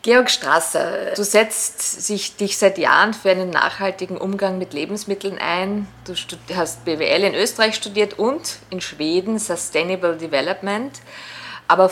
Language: German